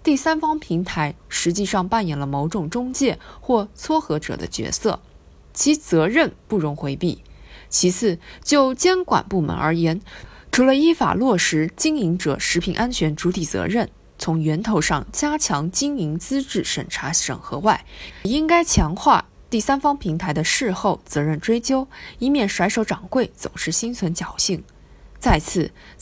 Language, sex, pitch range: Chinese, female, 165-275 Hz